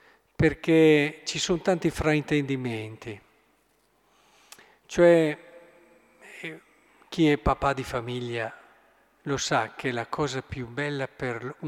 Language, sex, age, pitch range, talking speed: Italian, male, 50-69, 125-165 Hz, 100 wpm